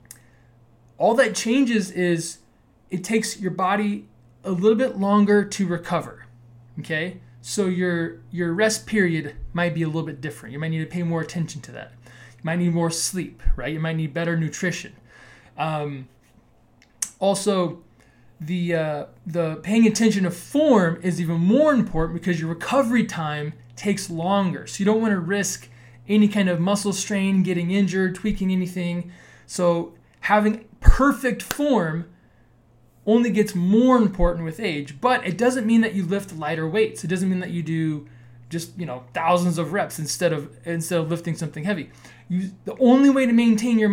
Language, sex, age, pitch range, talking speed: English, male, 20-39, 150-205 Hz, 170 wpm